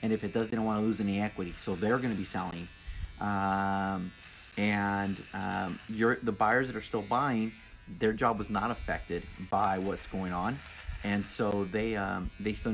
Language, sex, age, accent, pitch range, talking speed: English, male, 30-49, American, 90-110 Hz, 195 wpm